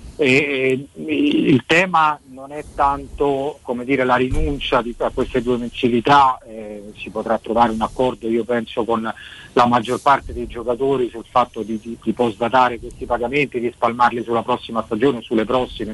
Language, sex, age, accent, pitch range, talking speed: Italian, male, 40-59, native, 115-140 Hz, 155 wpm